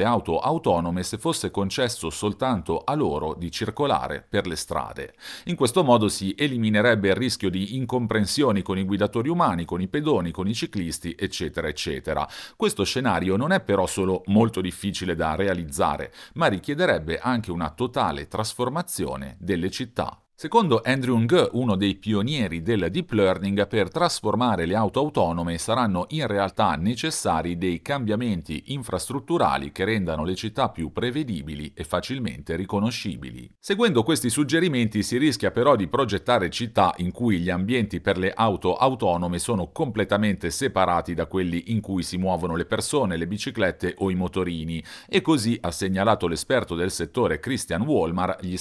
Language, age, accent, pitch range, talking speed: Italian, 40-59, native, 90-120 Hz, 155 wpm